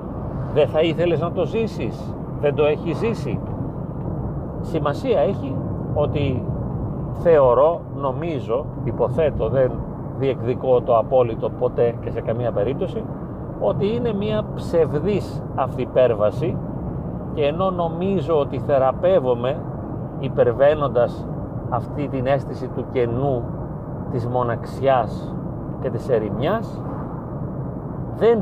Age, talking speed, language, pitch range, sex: 40-59, 100 wpm, Greek, 125-150 Hz, male